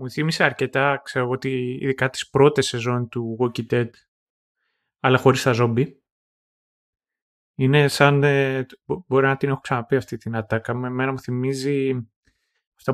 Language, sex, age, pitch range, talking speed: Greek, male, 20-39, 125-140 Hz, 145 wpm